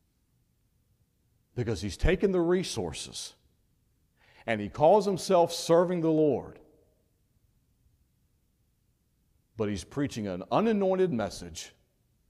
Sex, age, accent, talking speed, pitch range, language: male, 40-59, American, 90 wpm, 105-135 Hz, English